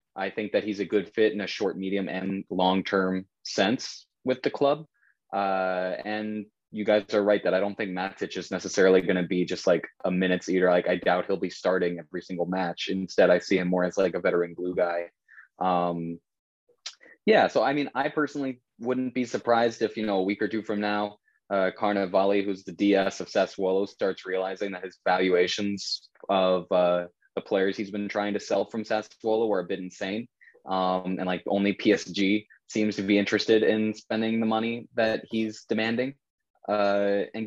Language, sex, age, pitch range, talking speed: English, male, 20-39, 95-110 Hz, 195 wpm